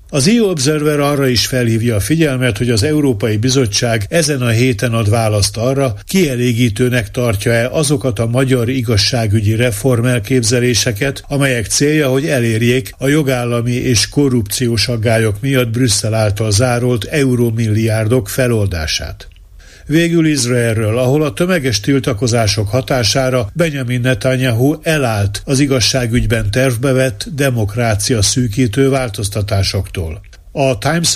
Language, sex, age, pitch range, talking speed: Hungarian, male, 60-79, 115-135 Hz, 110 wpm